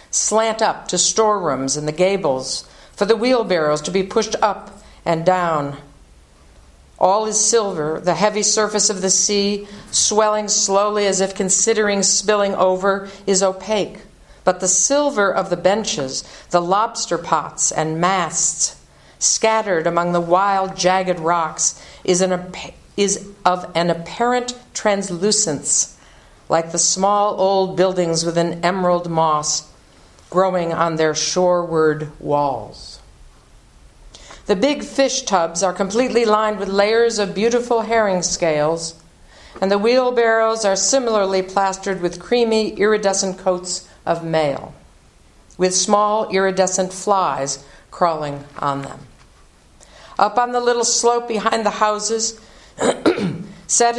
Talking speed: 125 wpm